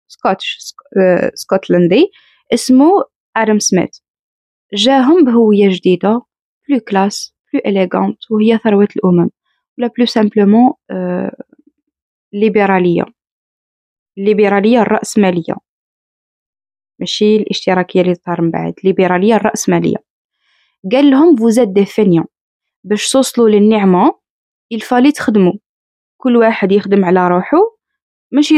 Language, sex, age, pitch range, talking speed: Arabic, female, 20-39, 195-255 Hz, 90 wpm